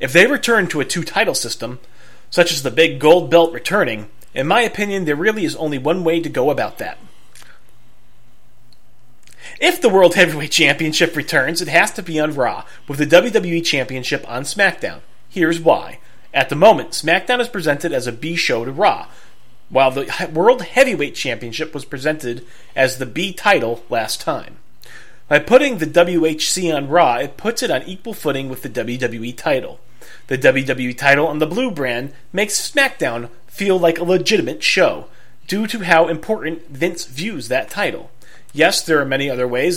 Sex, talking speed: male, 170 wpm